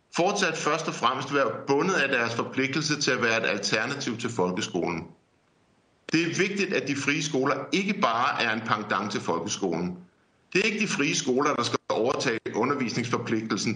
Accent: native